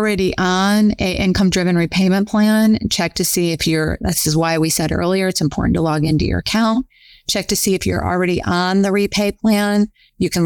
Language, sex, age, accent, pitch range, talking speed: English, female, 30-49, American, 165-200 Hz, 210 wpm